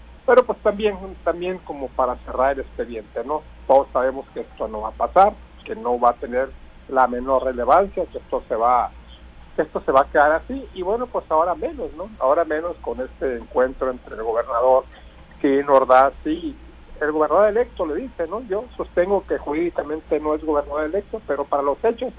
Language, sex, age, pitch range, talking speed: Spanish, male, 60-79, 130-195 Hz, 195 wpm